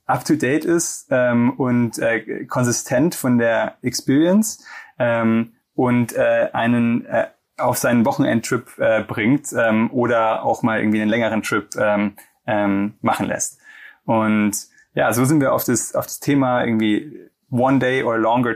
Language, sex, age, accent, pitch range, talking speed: German, male, 20-39, German, 115-140 Hz, 150 wpm